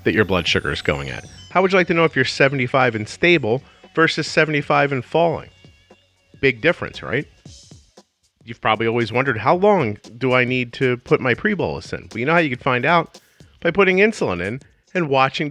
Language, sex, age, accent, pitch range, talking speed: English, male, 40-59, American, 110-175 Hz, 205 wpm